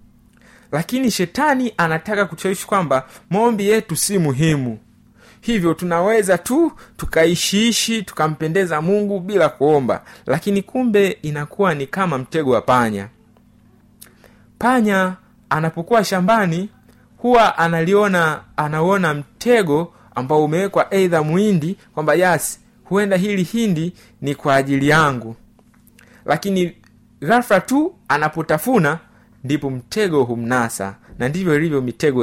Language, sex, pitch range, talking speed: Swahili, male, 135-200 Hz, 100 wpm